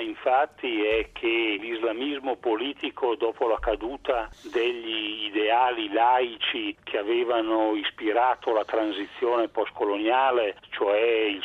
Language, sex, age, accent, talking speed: Italian, male, 50-69, native, 100 wpm